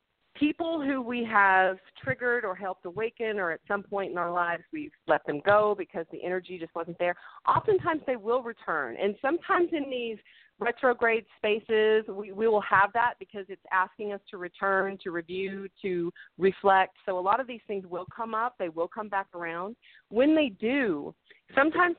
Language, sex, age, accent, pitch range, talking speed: English, female, 40-59, American, 185-235 Hz, 185 wpm